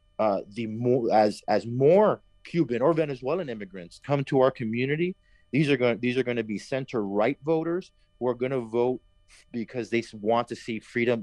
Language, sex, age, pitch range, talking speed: English, male, 30-49, 105-130 Hz, 185 wpm